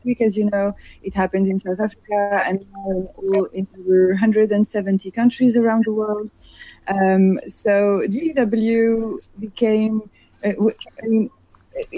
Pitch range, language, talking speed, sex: 190-225 Hz, English, 110 wpm, female